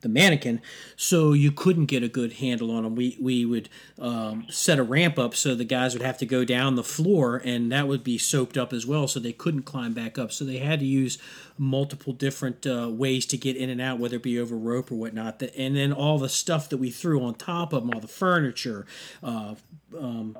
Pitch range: 125-150 Hz